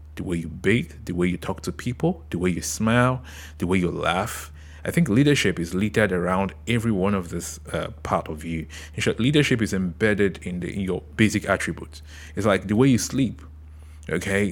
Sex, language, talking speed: male, English, 205 wpm